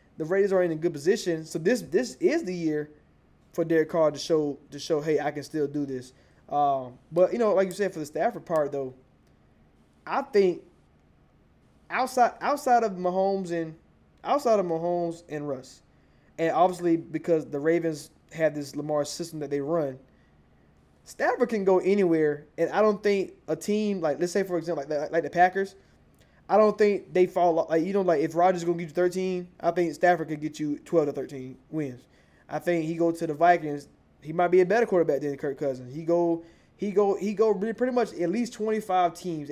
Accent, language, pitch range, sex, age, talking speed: American, English, 150-180 Hz, male, 20-39, 210 wpm